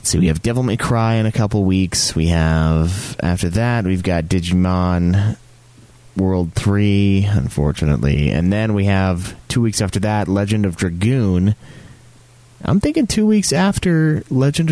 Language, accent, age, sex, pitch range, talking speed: English, American, 30-49, male, 90-125 Hz, 150 wpm